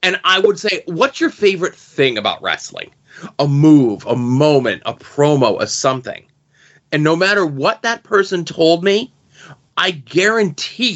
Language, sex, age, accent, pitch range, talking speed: English, male, 30-49, American, 150-190 Hz, 155 wpm